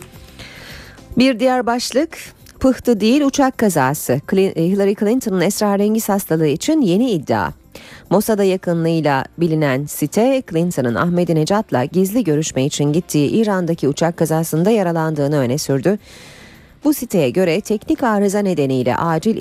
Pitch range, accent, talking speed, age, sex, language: 155-210 Hz, native, 115 wpm, 40-59, female, Turkish